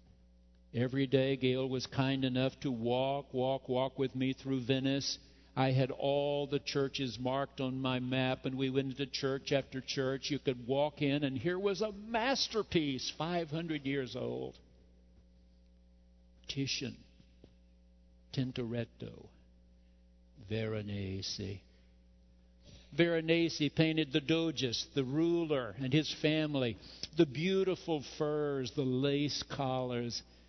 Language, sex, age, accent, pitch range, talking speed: English, male, 60-79, American, 90-140 Hz, 120 wpm